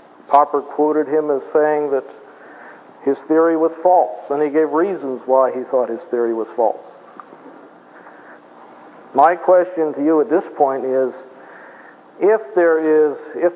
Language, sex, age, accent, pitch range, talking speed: English, male, 50-69, American, 135-165 Hz, 145 wpm